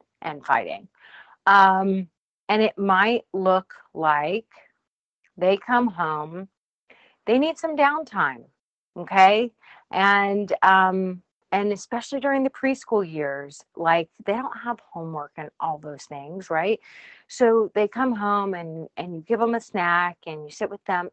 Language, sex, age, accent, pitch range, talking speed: English, female, 40-59, American, 170-225 Hz, 140 wpm